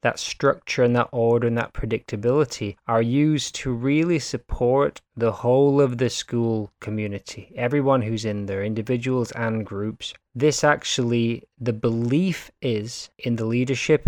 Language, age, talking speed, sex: English, 20-39, 145 wpm, male